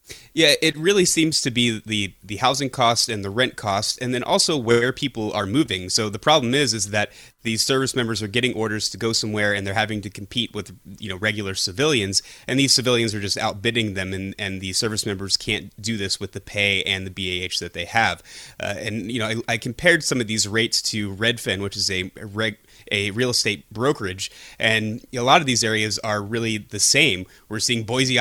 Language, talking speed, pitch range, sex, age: English, 220 wpm, 105-125 Hz, male, 30-49